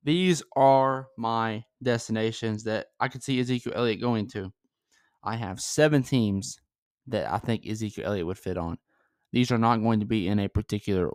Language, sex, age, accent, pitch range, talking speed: English, male, 20-39, American, 105-120 Hz, 180 wpm